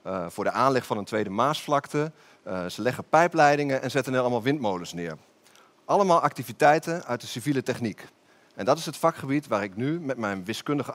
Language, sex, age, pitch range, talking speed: Dutch, male, 40-59, 120-160 Hz, 190 wpm